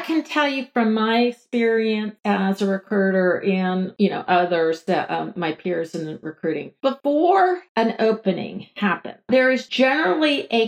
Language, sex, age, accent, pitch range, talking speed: English, female, 50-69, American, 195-245 Hz, 150 wpm